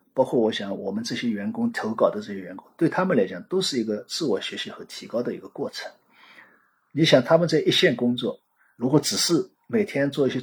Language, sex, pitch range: Chinese, male, 125-195 Hz